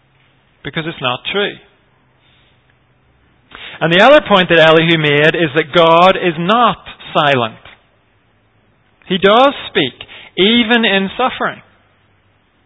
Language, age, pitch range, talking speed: English, 40-59, 120-195 Hz, 110 wpm